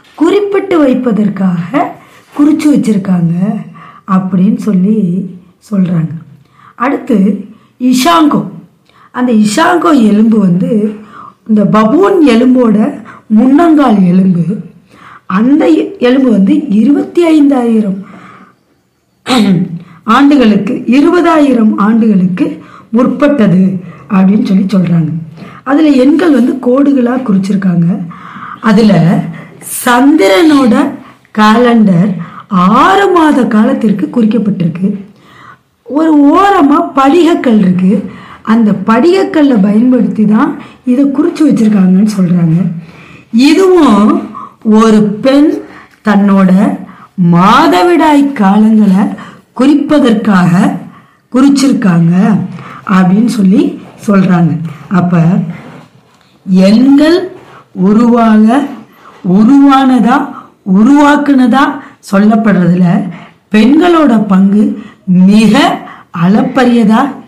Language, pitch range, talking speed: Tamil, 190-270 Hz, 65 wpm